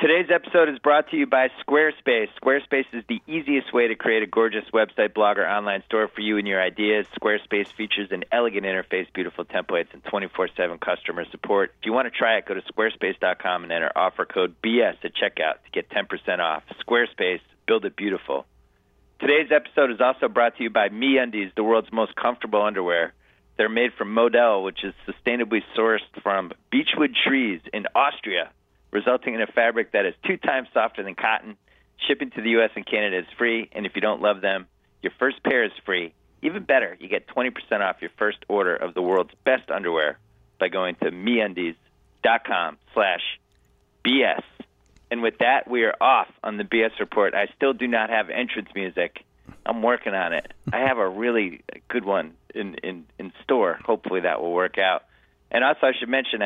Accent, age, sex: American, 40-59, male